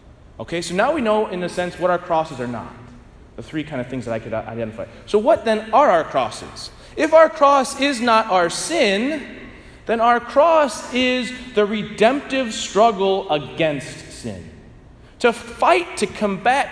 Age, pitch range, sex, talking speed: 30-49, 185-255 Hz, male, 170 wpm